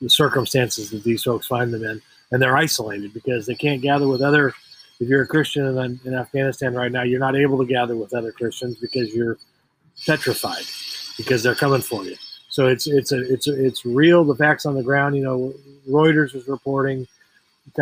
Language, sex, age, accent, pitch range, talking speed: English, male, 40-59, American, 125-140 Hz, 200 wpm